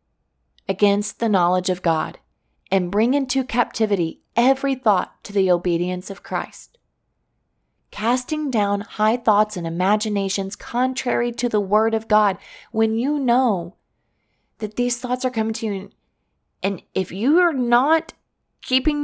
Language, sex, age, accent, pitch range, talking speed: English, female, 30-49, American, 185-235 Hz, 140 wpm